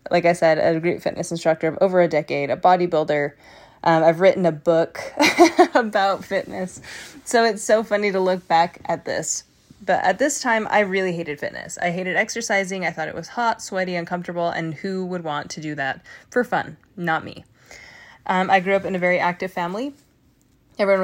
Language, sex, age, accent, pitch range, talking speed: English, female, 20-39, American, 165-200 Hz, 195 wpm